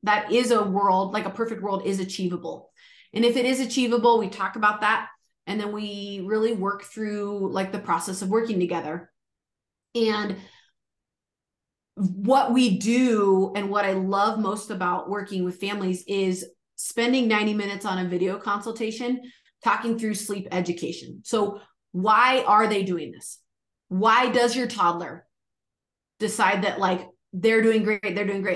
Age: 30-49